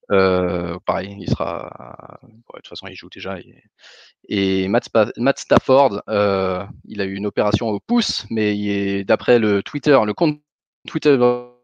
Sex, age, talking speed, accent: male, 20-39, 175 wpm, French